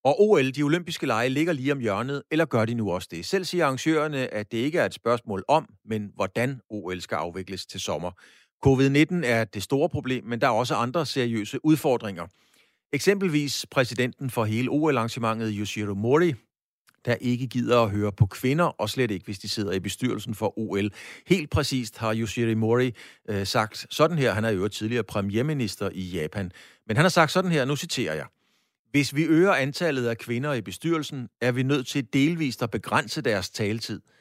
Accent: native